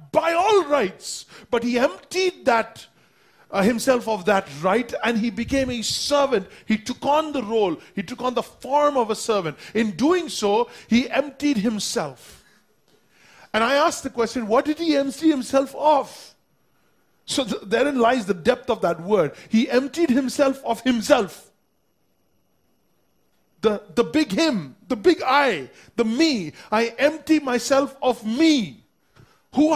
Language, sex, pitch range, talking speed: English, male, 220-300 Hz, 155 wpm